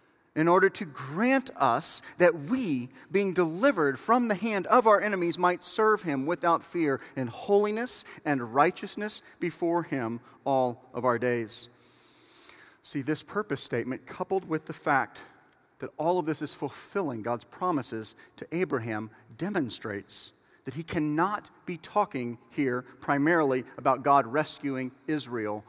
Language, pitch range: English, 135-210 Hz